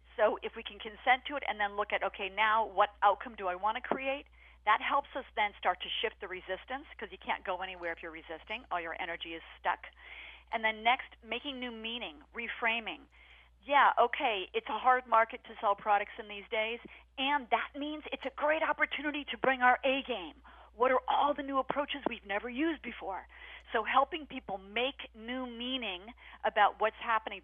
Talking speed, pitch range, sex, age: 200 wpm, 200-255 Hz, female, 40-59